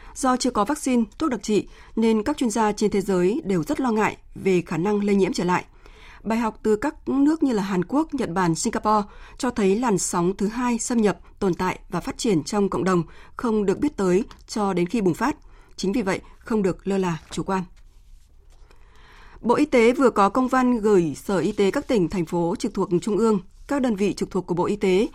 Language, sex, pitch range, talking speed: Vietnamese, female, 185-230 Hz, 235 wpm